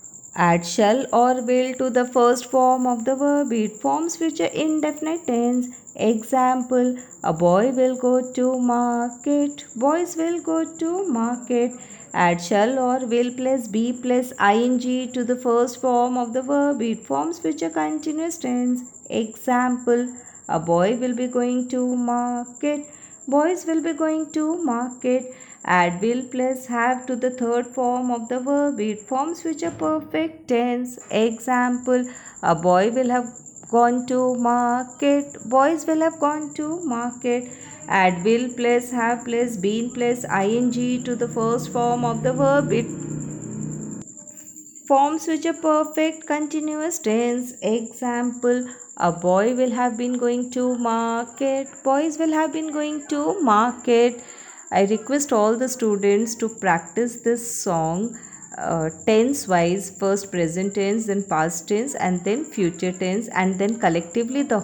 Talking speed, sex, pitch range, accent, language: 150 wpm, female, 215-260 Hz, native, Hindi